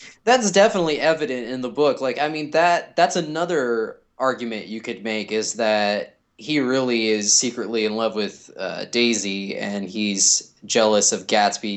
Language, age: English, 20-39